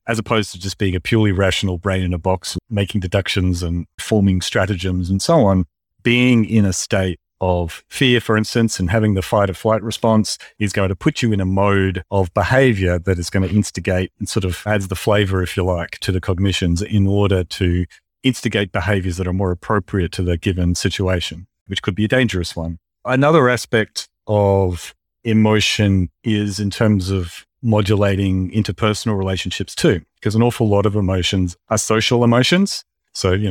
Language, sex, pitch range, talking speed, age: English, male, 95-110 Hz, 185 wpm, 40-59